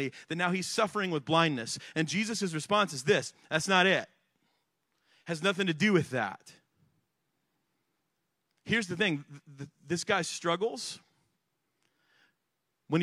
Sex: male